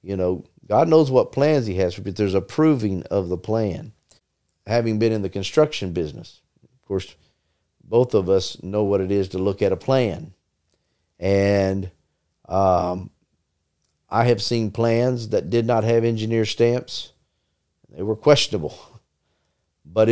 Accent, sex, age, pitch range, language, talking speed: American, male, 50-69, 90-115 Hz, English, 150 wpm